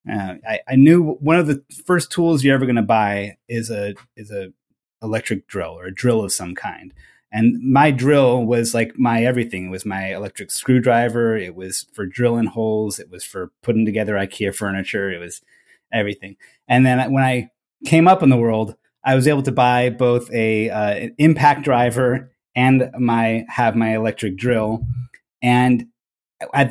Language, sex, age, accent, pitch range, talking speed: English, male, 30-49, American, 110-135 Hz, 180 wpm